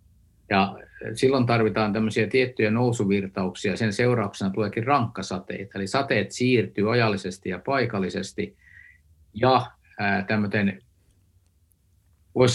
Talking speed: 85 wpm